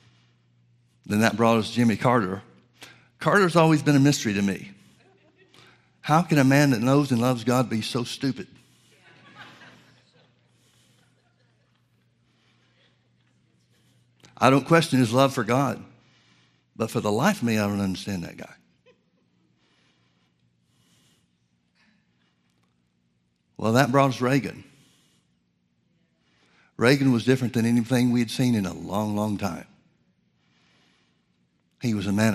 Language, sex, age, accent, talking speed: English, male, 60-79, American, 120 wpm